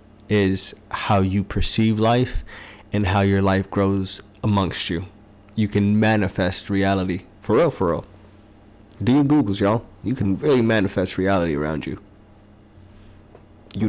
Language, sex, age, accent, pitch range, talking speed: English, male, 20-39, American, 100-115 Hz, 140 wpm